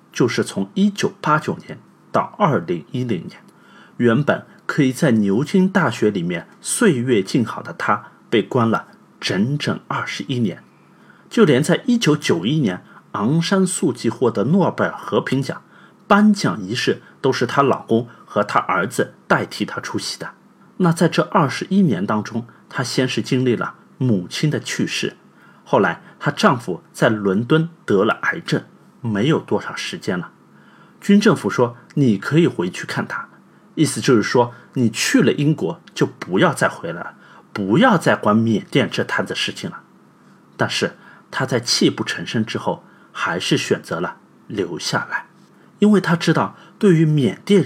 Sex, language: male, Chinese